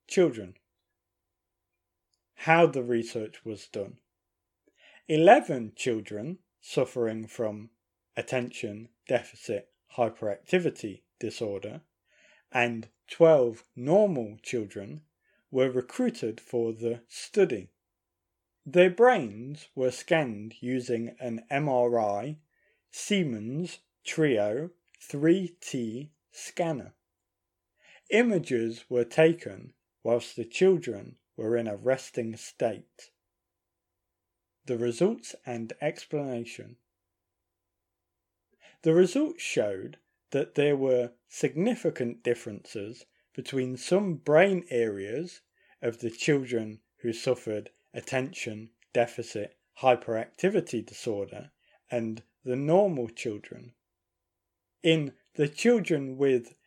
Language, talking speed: English, 85 wpm